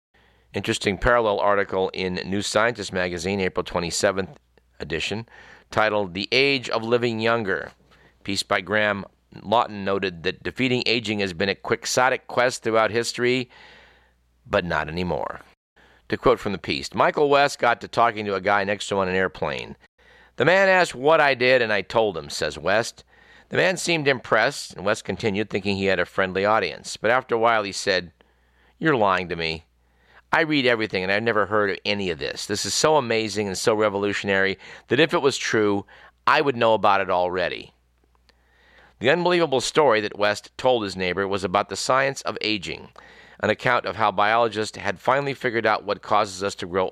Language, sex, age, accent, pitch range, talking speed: English, male, 50-69, American, 95-120 Hz, 185 wpm